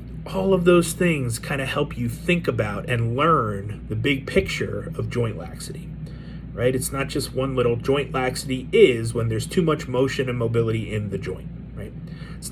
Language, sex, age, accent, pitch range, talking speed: English, male, 30-49, American, 120-155 Hz, 185 wpm